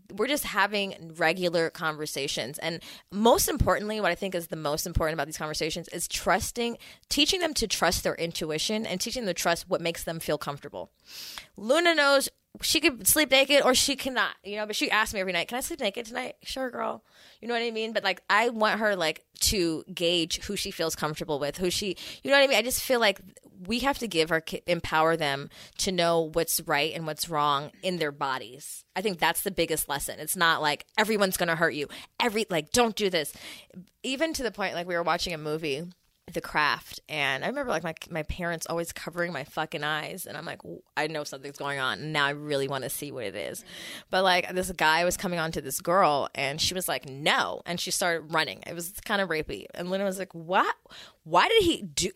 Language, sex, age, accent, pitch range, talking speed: English, female, 20-39, American, 160-235 Hz, 230 wpm